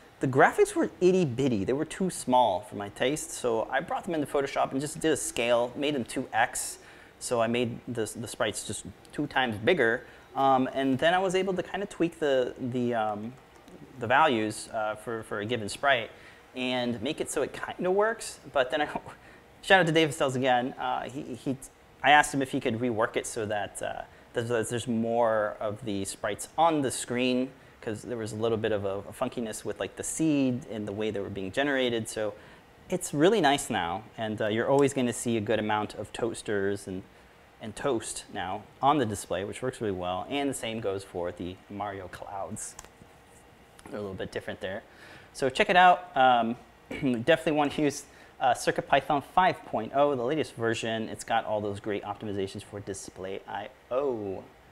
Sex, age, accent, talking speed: male, 30-49, American, 200 wpm